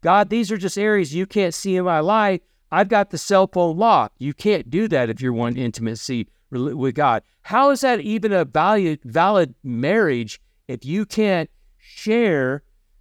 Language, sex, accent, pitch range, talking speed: English, male, American, 135-200 Hz, 175 wpm